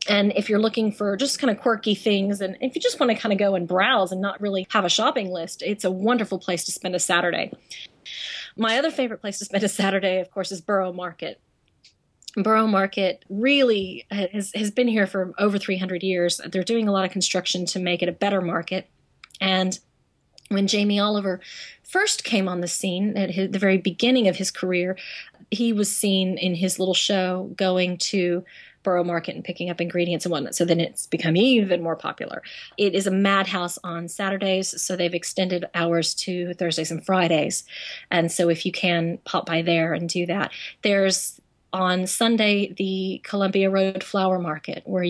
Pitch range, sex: 180-205 Hz, female